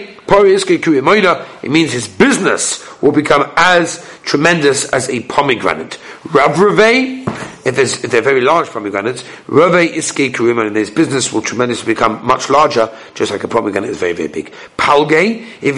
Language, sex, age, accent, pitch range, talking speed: English, male, 50-69, British, 145-235 Hz, 130 wpm